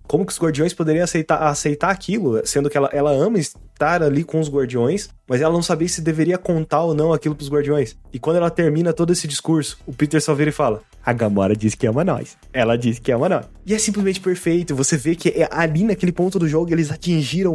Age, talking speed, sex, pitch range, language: 20-39, 235 wpm, male, 130-170 Hz, Portuguese